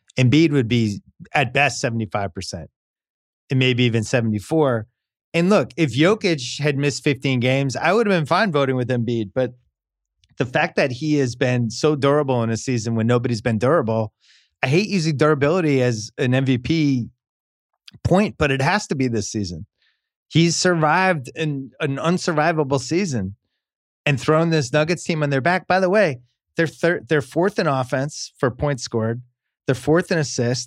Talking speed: 170 wpm